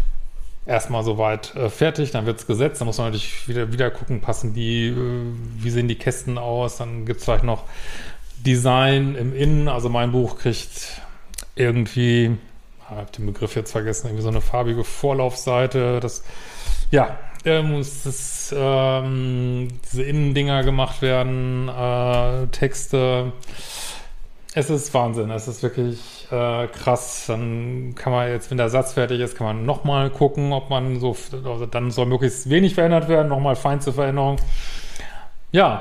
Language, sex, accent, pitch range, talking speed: German, male, German, 115-130 Hz, 160 wpm